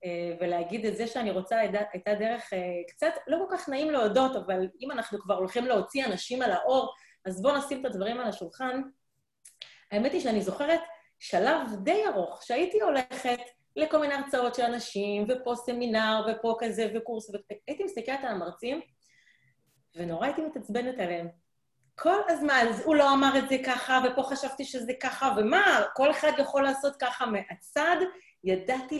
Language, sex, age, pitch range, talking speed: Hebrew, female, 30-49, 205-310 Hz, 160 wpm